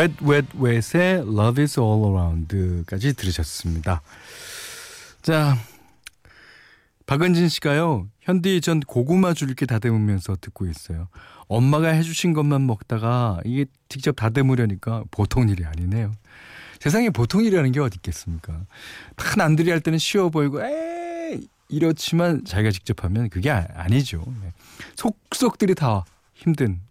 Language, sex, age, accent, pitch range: Korean, male, 40-59, native, 100-155 Hz